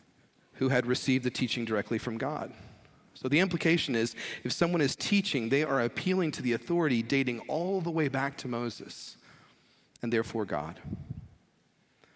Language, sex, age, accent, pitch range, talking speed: English, male, 40-59, American, 125-155 Hz, 160 wpm